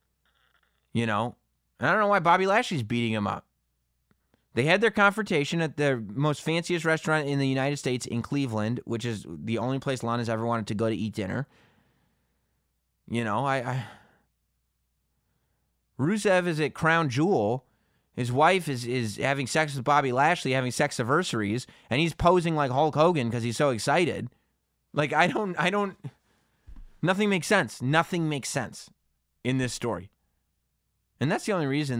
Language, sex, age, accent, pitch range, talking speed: English, male, 30-49, American, 110-160 Hz, 165 wpm